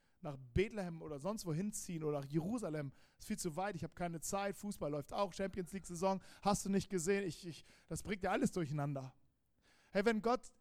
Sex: male